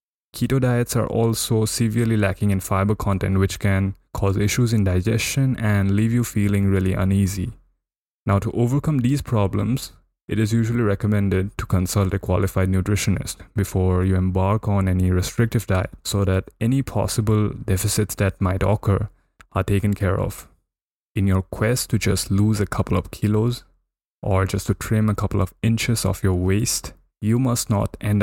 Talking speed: 170 wpm